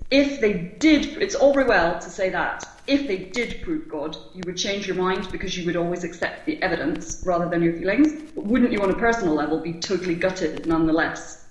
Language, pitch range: English, 185-250 Hz